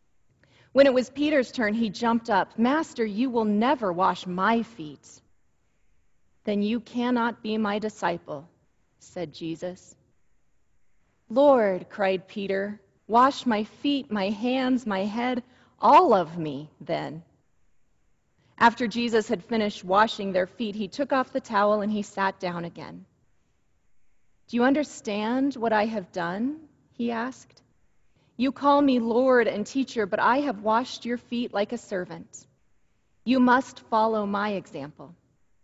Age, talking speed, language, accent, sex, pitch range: 30-49, 140 wpm, English, American, female, 180-235 Hz